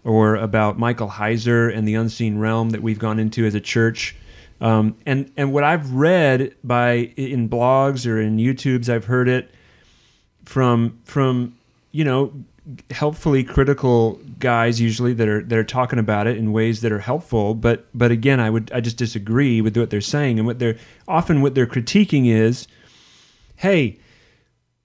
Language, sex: English, male